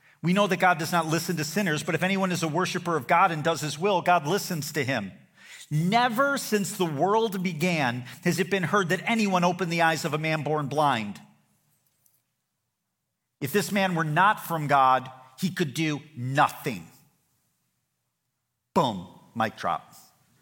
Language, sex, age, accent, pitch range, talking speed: English, male, 40-59, American, 120-175 Hz, 170 wpm